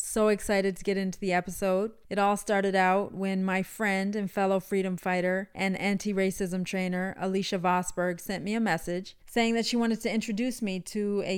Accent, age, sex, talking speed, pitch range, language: American, 30-49, female, 190 wpm, 180-210 Hz, English